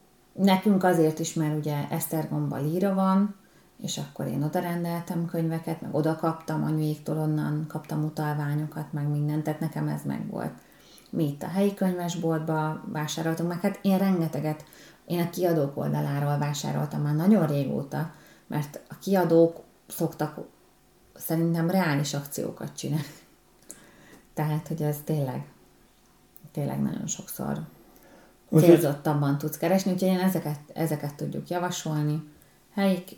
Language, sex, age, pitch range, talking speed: Hungarian, female, 30-49, 155-190 Hz, 130 wpm